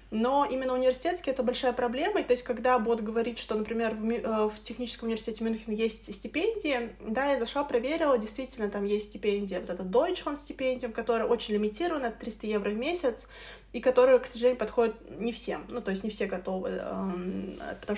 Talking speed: 175 wpm